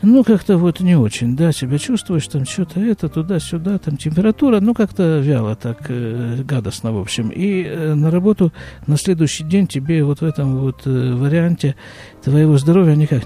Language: Russian